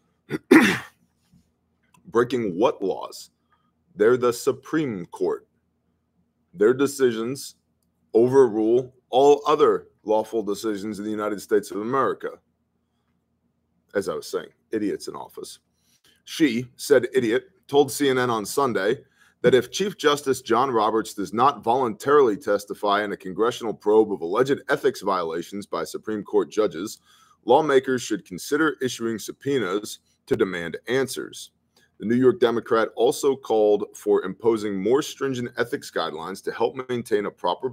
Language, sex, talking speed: English, male, 130 wpm